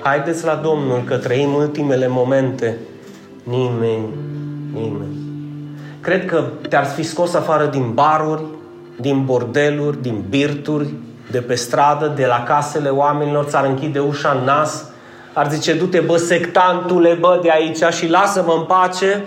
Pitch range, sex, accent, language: 140-200 Hz, male, native, Romanian